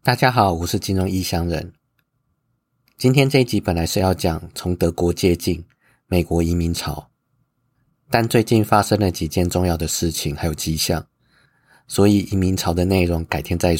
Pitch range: 85-105 Hz